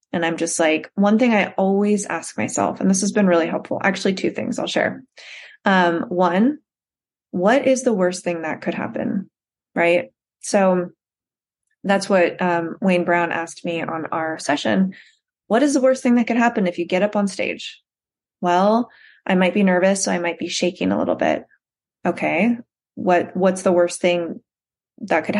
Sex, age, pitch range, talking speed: female, 20-39, 175-240 Hz, 185 wpm